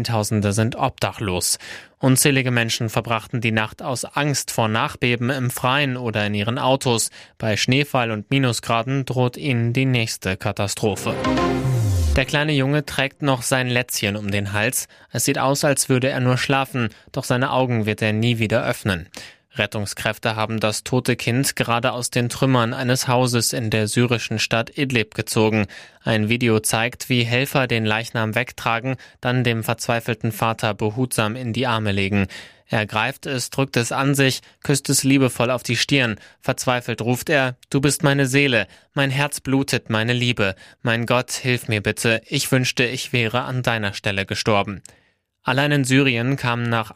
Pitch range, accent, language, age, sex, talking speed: 110-130 Hz, German, German, 20-39, male, 165 wpm